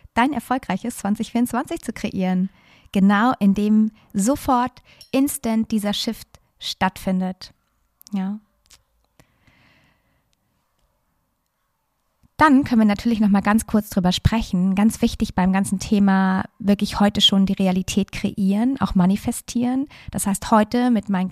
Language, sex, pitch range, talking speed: German, female, 195-225 Hz, 115 wpm